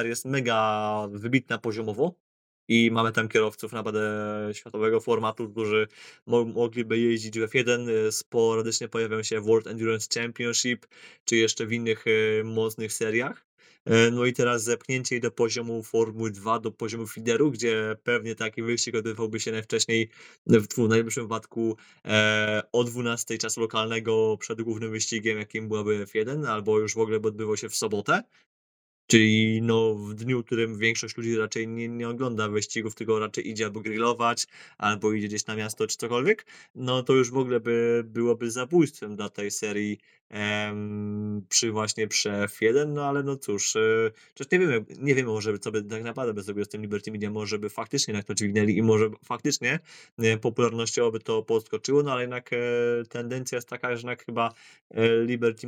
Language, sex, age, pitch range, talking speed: Polish, male, 20-39, 110-120 Hz, 160 wpm